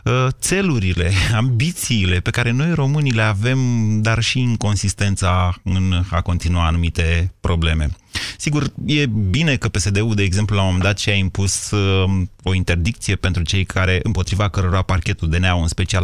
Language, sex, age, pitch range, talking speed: Romanian, male, 20-39, 95-120 Hz, 160 wpm